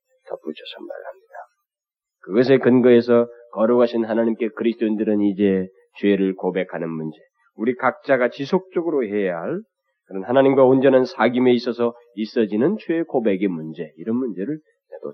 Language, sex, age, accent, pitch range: Korean, male, 40-59, native, 105-170 Hz